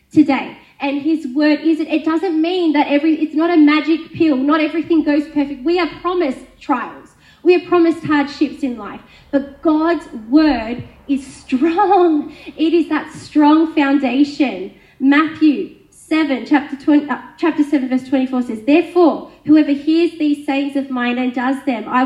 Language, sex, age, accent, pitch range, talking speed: English, female, 20-39, Australian, 260-315 Hz, 160 wpm